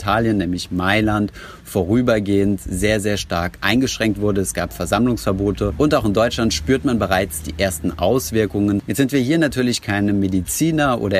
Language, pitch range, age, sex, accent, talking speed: German, 95-115 Hz, 30-49, male, German, 160 wpm